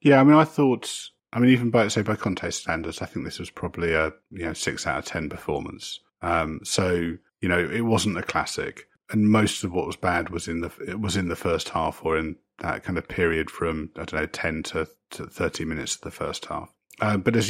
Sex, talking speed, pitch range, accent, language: male, 245 wpm, 90-105 Hz, British, English